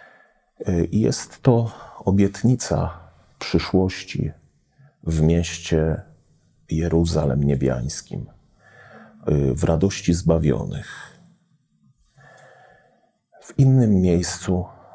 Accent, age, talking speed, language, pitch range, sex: native, 40-59, 55 wpm, Polish, 75-95 Hz, male